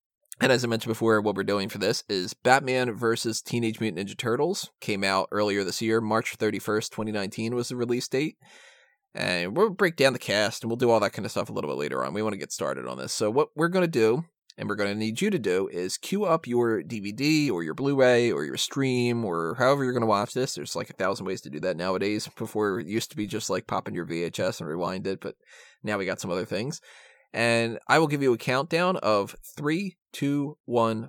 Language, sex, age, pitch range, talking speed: English, male, 20-39, 105-135 Hz, 245 wpm